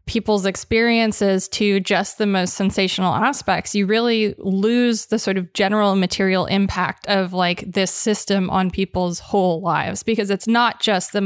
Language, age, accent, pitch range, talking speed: English, 20-39, American, 185-220 Hz, 160 wpm